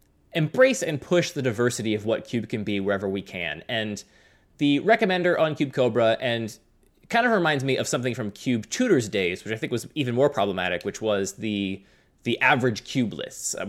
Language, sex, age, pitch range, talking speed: English, male, 20-39, 100-130 Hz, 195 wpm